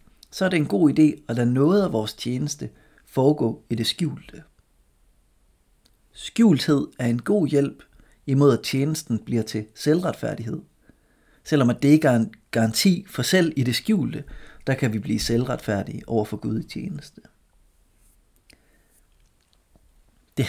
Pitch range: 110-155 Hz